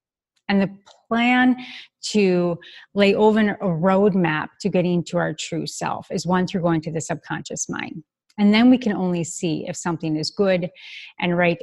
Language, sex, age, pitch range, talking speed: English, female, 30-49, 170-225 Hz, 175 wpm